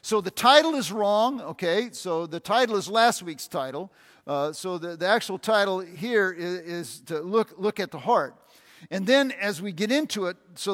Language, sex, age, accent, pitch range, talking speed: English, male, 50-69, American, 175-230 Hz, 200 wpm